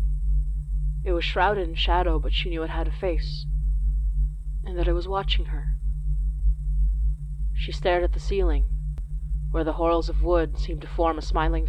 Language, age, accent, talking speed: English, 30-49, American, 170 wpm